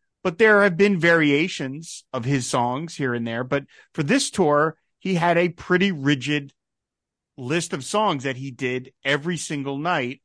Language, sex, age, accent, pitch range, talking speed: English, male, 40-59, American, 125-160 Hz, 170 wpm